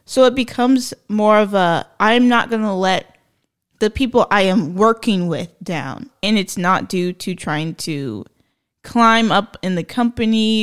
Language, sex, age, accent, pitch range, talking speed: English, female, 10-29, American, 175-225 Hz, 170 wpm